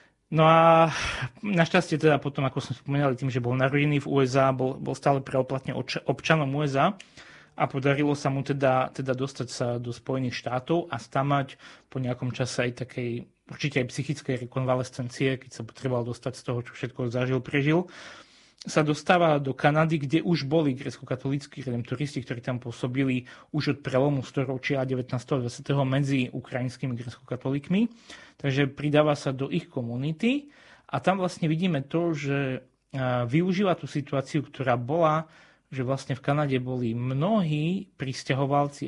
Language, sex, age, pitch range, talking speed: Slovak, male, 30-49, 130-155 Hz, 150 wpm